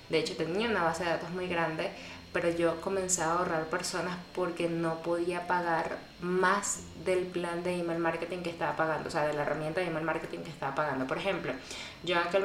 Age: 20-39